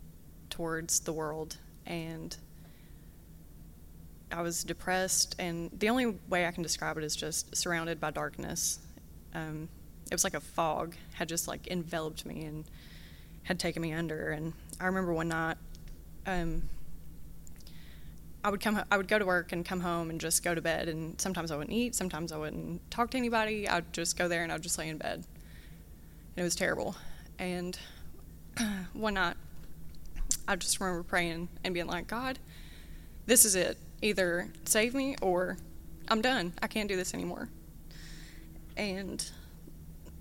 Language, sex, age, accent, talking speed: English, female, 20-39, American, 165 wpm